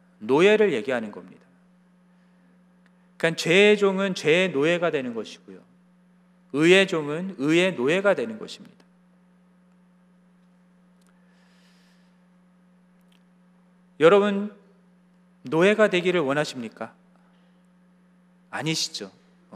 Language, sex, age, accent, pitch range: Korean, male, 40-59, native, 175-195 Hz